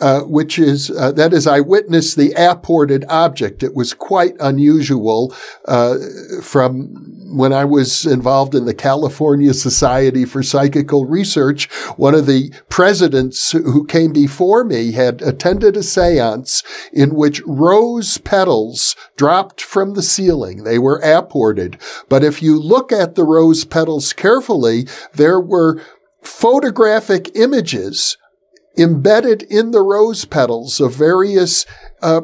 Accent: American